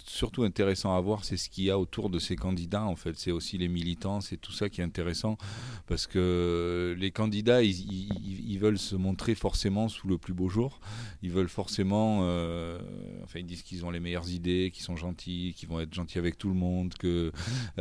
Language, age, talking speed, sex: French, 40-59, 220 wpm, male